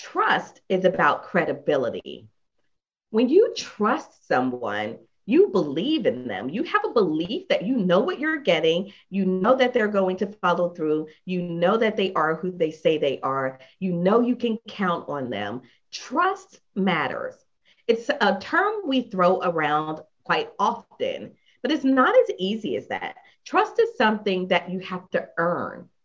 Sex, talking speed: female, 165 wpm